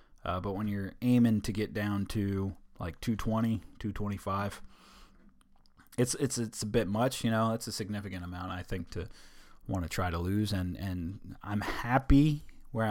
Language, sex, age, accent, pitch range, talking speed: English, male, 30-49, American, 95-115 Hz, 170 wpm